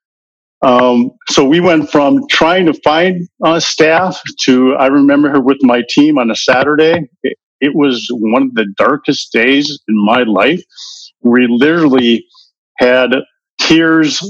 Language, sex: English, male